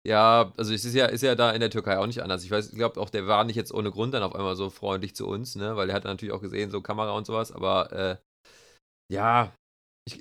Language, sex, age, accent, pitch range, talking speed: German, male, 30-49, German, 110-135 Hz, 275 wpm